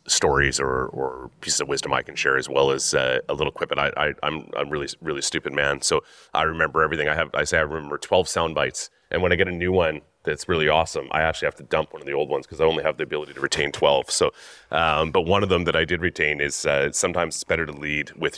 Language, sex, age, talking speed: English, male, 30-49, 280 wpm